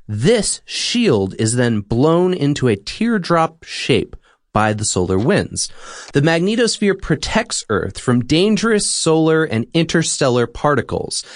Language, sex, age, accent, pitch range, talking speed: English, male, 30-49, American, 110-170 Hz, 120 wpm